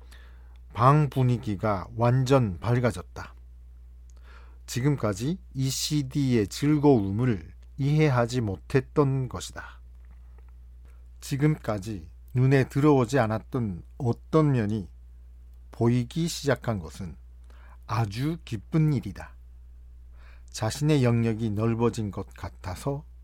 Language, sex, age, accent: Korean, male, 50-69, native